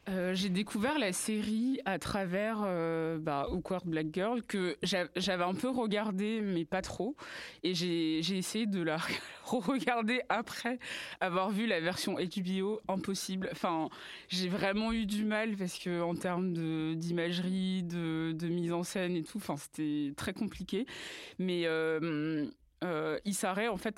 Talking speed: 160 wpm